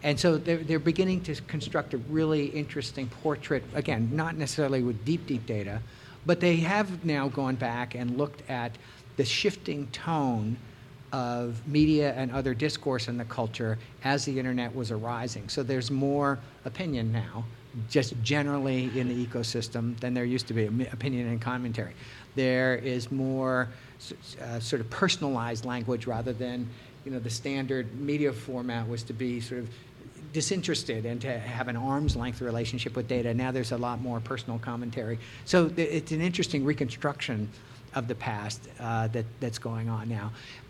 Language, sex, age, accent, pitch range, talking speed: English, male, 50-69, American, 120-140 Hz, 165 wpm